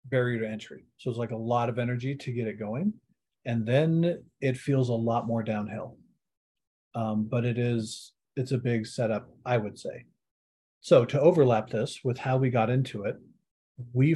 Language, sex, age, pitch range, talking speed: English, male, 40-59, 115-130 Hz, 185 wpm